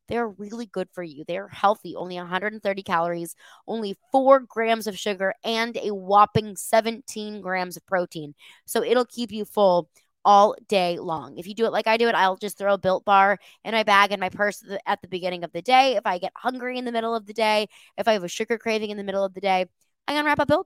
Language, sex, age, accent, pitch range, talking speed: English, female, 20-39, American, 185-235 Hz, 245 wpm